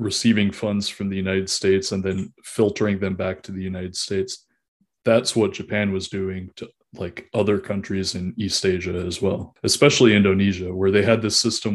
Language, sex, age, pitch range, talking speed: English, male, 20-39, 95-115 Hz, 185 wpm